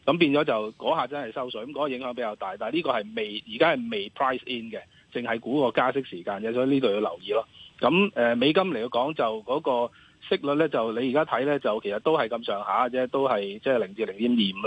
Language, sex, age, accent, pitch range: Chinese, male, 30-49, native, 110-140 Hz